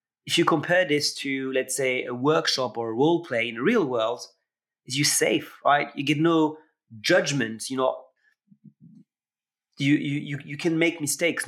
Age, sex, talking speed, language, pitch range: 30-49, male, 175 wpm, English, 130-165 Hz